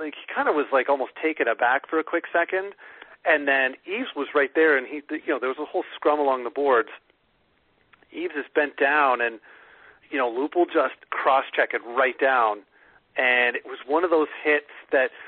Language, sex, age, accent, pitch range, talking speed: English, male, 40-59, American, 135-200 Hz, 210 wpm